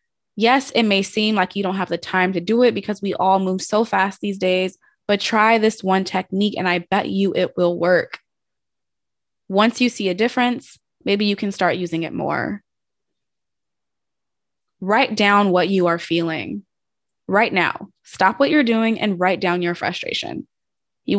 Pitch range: 180-220 Hz